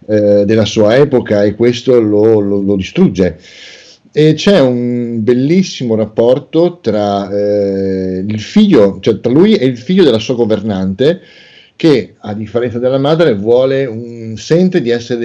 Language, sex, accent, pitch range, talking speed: Italian, male, native, 105-130 Hz, 145 wpm